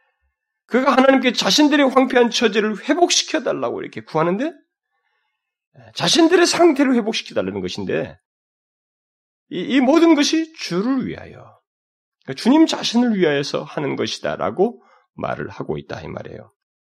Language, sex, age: Korean, male, 40-59